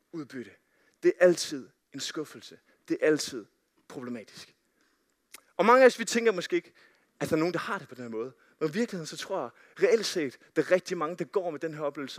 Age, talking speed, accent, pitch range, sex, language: 30-49, 225 wpm, native, 170-225 Hz, male, Danish